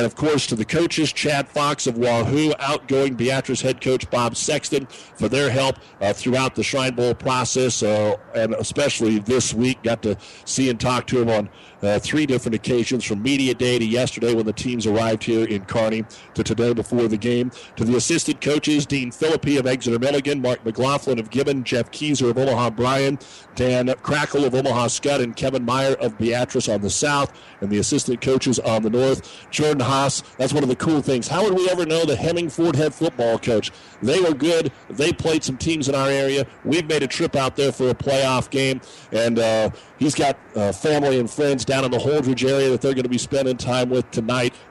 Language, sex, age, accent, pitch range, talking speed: English, male, 60-79, American, 115-140 Hz, 210 wpm